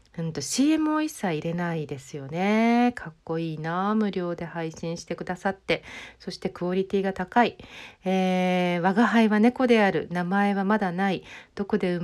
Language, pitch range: Japanese, 165-215 Hz